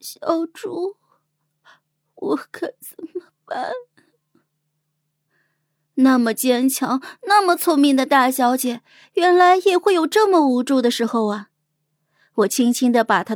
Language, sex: Chinese, female